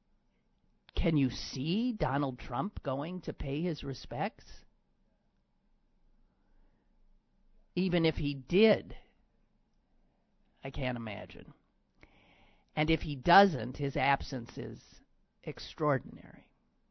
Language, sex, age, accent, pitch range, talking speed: English, male, 50-69, American, 125-150 Hz, 90 wpm